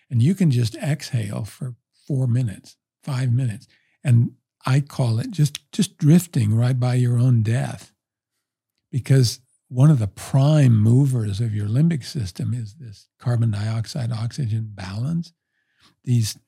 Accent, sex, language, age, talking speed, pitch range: American, male, English, 50-69, 140 wpm, 115-145 Hz